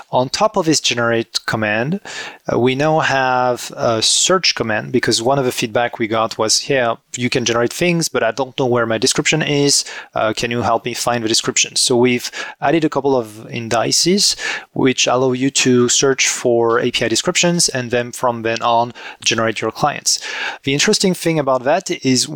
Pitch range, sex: 120-140 Hz, male